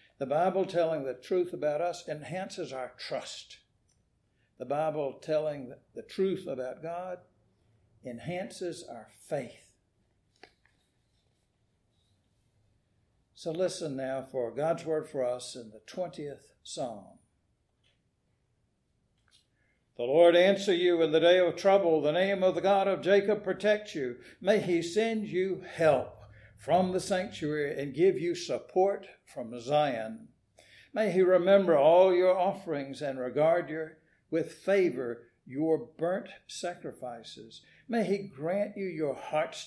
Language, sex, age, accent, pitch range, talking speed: English, male, 60-79, American, 130-185 Hz, 125 wpm